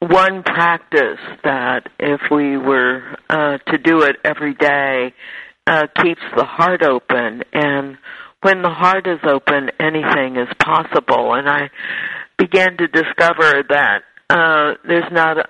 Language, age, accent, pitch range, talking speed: English, 60-79, American, 125-160 Hz, 135 wpm